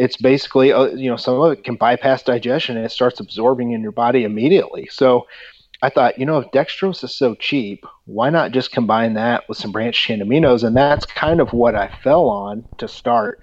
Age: 40-59